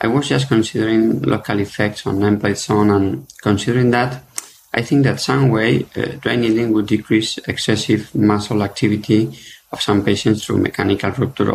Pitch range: 105-125 Hz